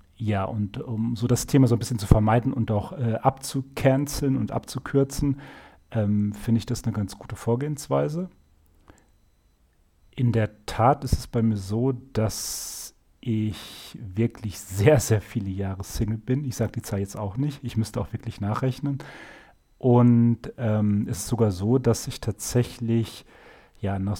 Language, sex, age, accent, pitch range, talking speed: German, male, 40-59, German, 105-130 Hz, 155 wpm